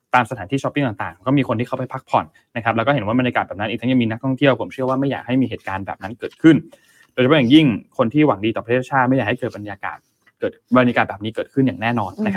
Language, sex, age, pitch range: Thai, male, 20-39, 115-150 Hz